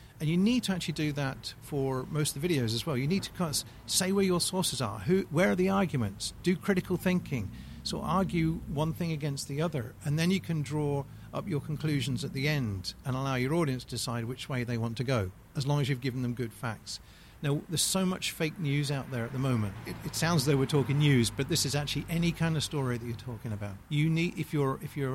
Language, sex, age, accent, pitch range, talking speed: English, male, 40-59, British, 120-150 Hz, 250 wpm